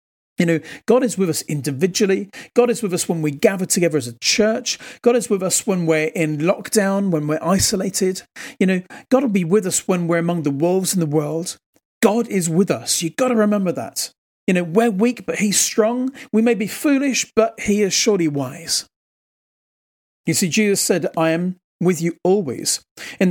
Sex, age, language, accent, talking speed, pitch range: male, 40-59, English, British, 205 wpm, 165-220 Hz